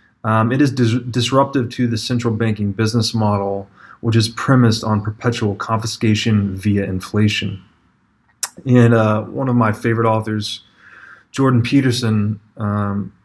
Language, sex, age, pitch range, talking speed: English, male, 20-39, 100-115 Hz, 125 wpm